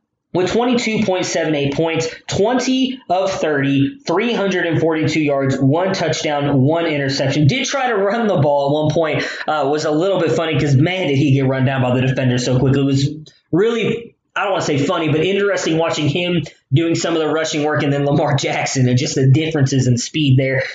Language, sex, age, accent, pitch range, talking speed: English, male, 20-39, American, 145-185 Hz, 200 wpm